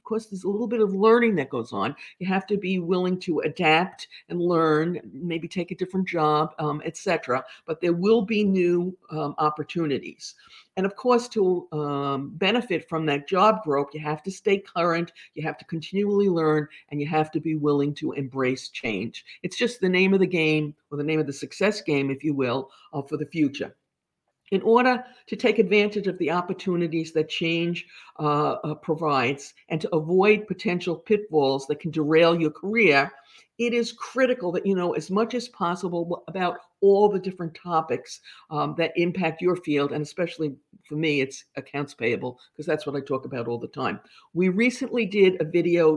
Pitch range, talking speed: 150-195 Hz, 190 wpm